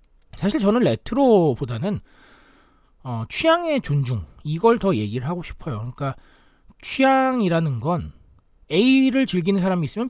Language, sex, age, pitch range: Korean, male, 40-59, 130-210 Hz